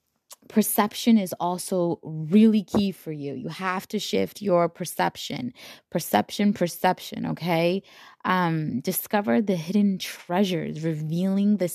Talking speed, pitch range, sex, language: 115 wpm, 160-205 Hz, female, English